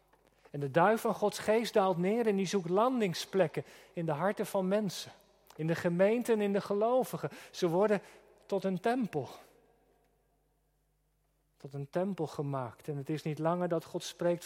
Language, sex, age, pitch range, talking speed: Dutch, male, 40-59, 160-200 Hz, 170 wpm